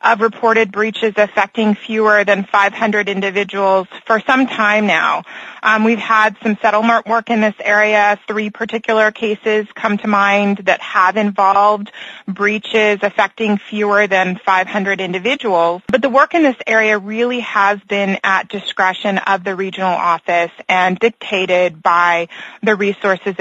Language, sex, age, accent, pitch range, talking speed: English, female, 20-39, American, 185-220 Hz, 145 wpm